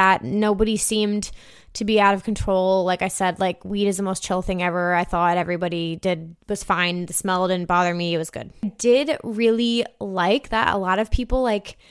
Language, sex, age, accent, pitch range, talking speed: English, female, 20-39, American, 190-225 Hz, 210 wpm